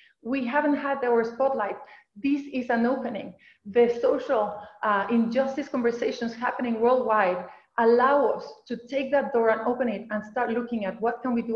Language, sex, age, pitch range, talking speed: English, female, 30-49, 210-265 Hz, 170 wpm